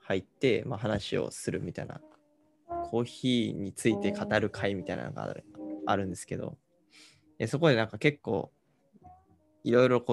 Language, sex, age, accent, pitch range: Japanese, male, 20-39, native, 105-145 Hz